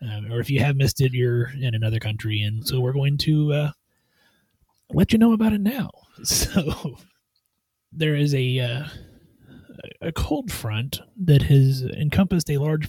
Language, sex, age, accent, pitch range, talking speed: English, male, 30-49, American, 120-160 Hz, 170 wpm